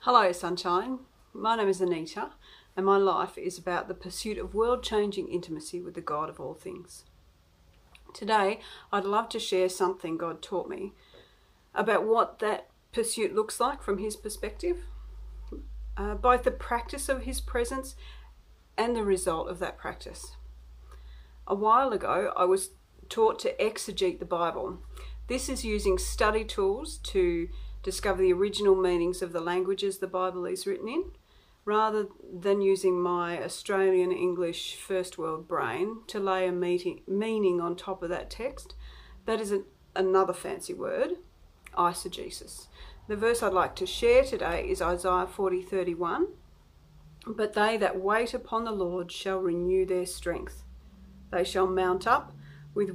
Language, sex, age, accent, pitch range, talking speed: English, female, 40-59, Australian, 180-230 Hz, 155 wpm